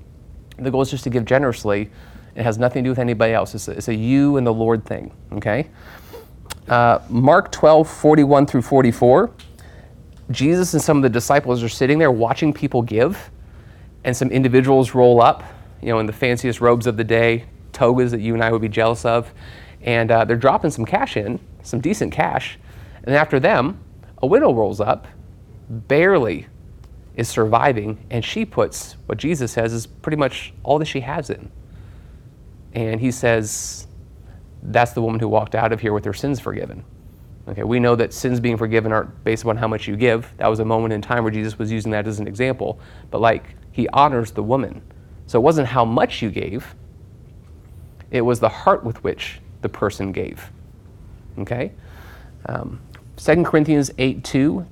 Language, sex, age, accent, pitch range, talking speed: English, male, 30-49, American, 105-125 Hz, 185 wpm